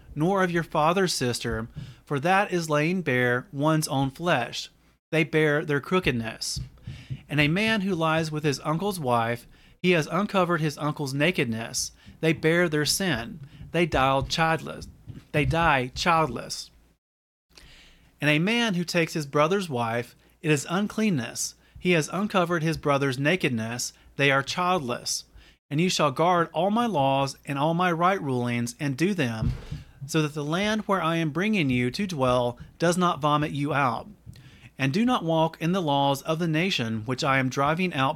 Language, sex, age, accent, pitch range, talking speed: English, male, 30-49, American, 130-175 Hz, 165 wpm